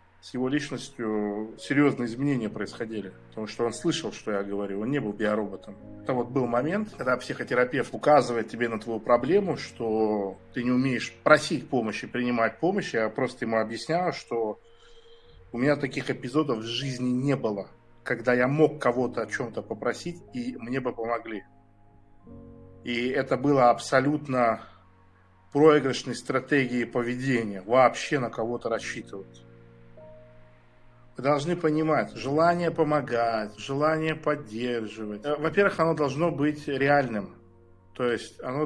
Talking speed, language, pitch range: 130 wpm, Russian, 115-150 Hz